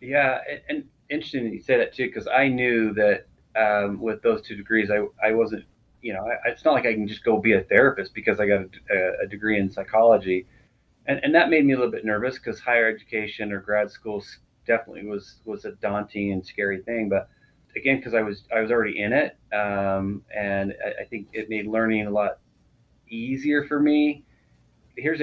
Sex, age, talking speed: male, 30-49, 210 wpm